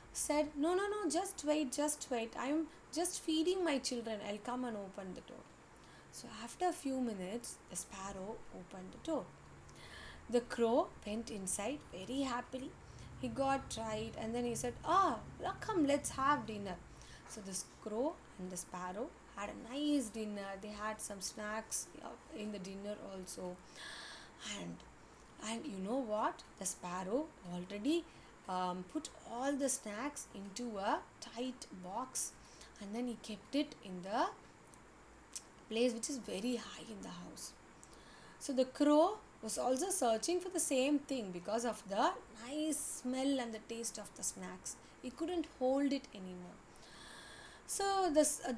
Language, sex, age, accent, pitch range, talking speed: English, female, 20-39, Indian, 210-295 Hz, 160 wpm